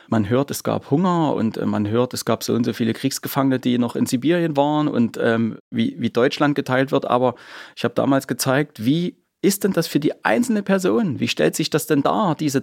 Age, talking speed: 30-49, 225 wpm